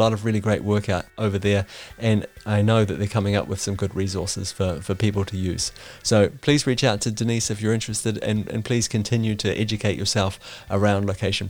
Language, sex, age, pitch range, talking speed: English, male, 30-49, 100-115 Hz, 220 wpm